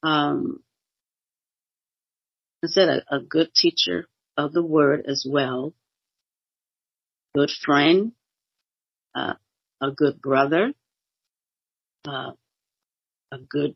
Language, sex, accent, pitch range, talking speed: English, female, American, 140-160 Hz, 90 wpm